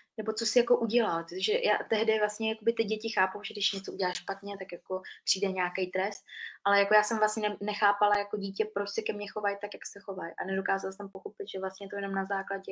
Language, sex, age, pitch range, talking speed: Czech, female, 20-39, 185-205 Hz, 220 wpm